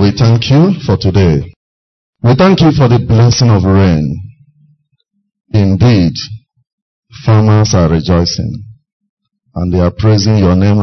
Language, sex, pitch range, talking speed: English, male, 95-140 Hz, 125 wpm